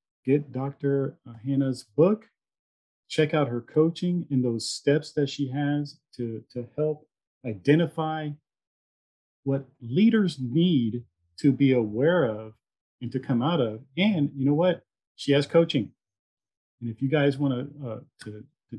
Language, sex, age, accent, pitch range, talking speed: English, male, 40-59, American, 120-145 Hz, 135 wpm